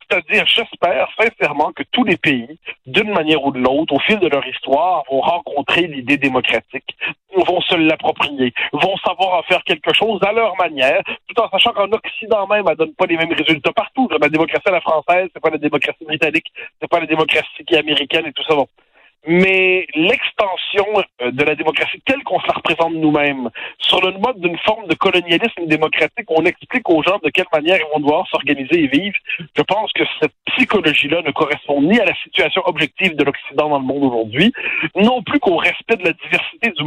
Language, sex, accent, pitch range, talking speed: French, male, French, 145-190 Hz, 205 wpm